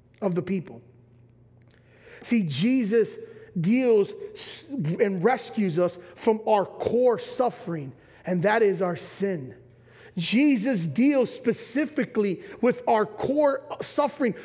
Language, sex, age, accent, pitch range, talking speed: English, male, 40-59, American, 185-280 Hz, 105 wpm